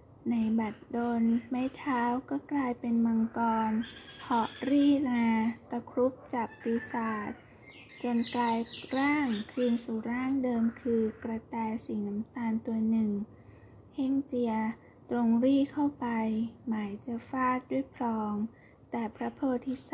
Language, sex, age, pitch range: Thai, female, 20-39, 225-255 Hz